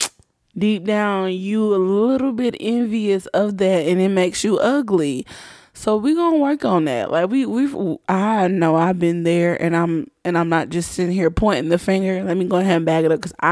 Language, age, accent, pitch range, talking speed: English, 20-39, American, 155-185 Hz, 220 wpm